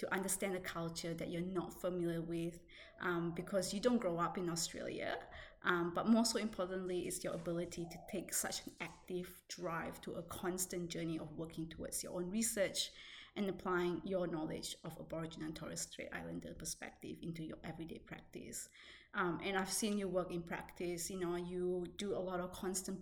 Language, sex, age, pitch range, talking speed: English, female, 20-39, 175-195 Hz, 190 wpm